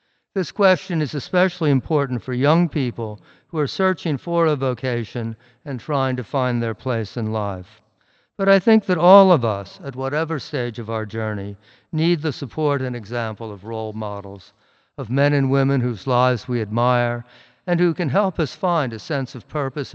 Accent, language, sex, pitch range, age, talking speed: American, English, male, 120-150 Hz, 50-69, 185 wpm